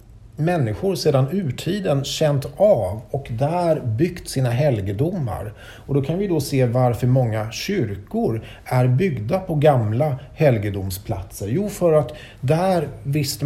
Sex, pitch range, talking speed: male, 110-145 Hz, 130 wpm